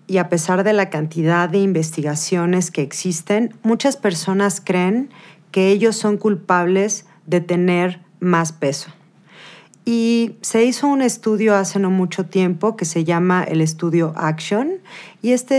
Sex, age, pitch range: female, 40-59, 180-225 Hz